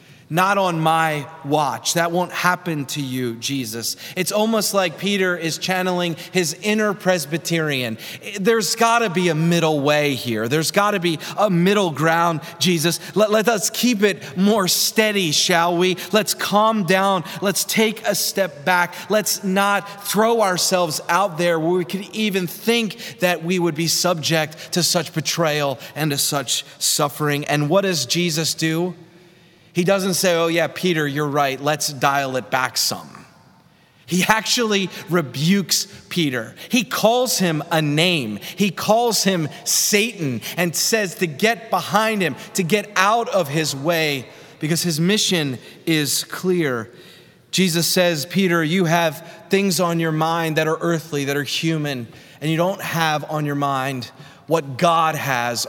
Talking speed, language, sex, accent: 160 wpm, English, male, American